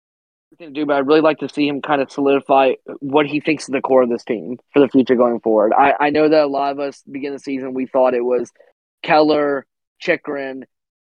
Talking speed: 240 wpm